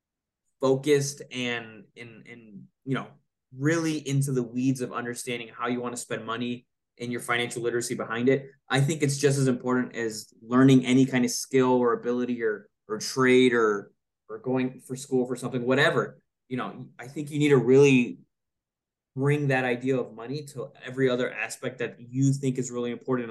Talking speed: 185 wpm